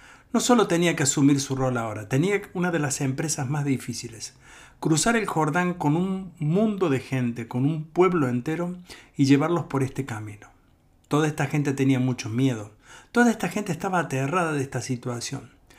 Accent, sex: Argentinian, male